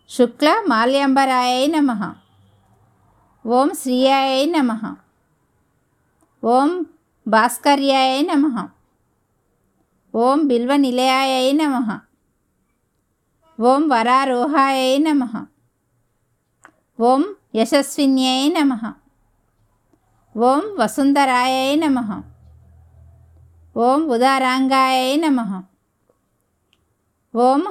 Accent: native